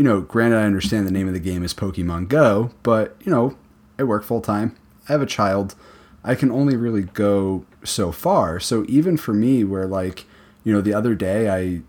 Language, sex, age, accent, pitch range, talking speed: English, male, 30-49, American, 95-115 Hz, 215 wpm